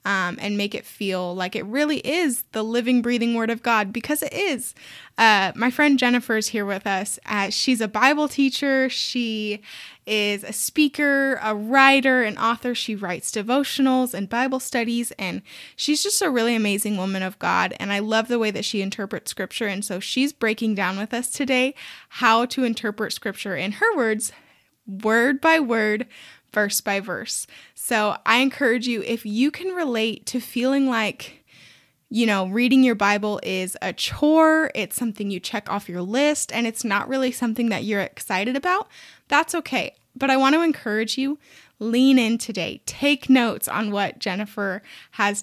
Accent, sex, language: American, female, English